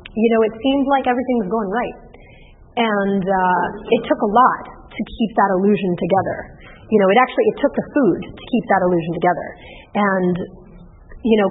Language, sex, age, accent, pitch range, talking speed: English, female, 30-49, American, 190-235 Hz, 190 wpm